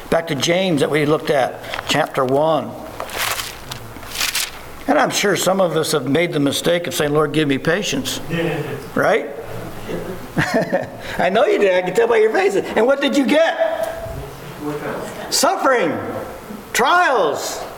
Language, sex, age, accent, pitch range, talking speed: English, male, 60-79, American, 160-245 Hz, 145 wpm